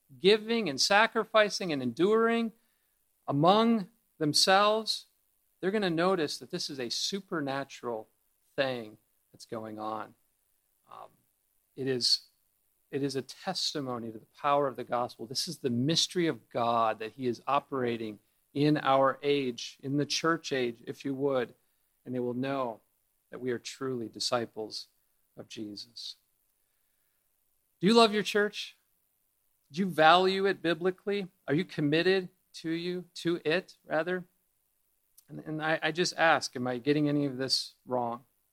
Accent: American